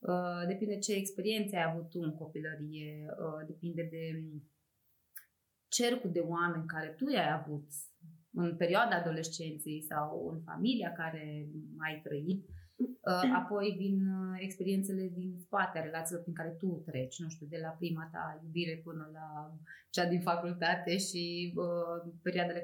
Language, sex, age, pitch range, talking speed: Romanian, female, 20-39, 165-230 Hz, 135 wpm